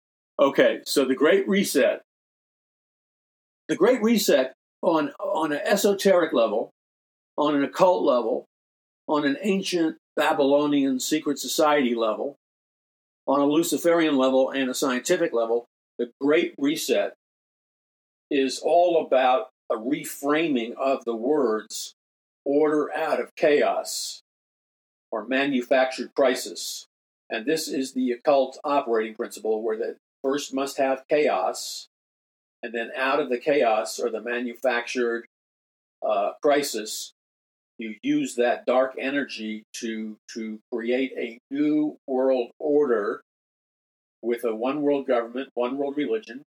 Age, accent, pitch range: 50-69, American, 115-150 Hz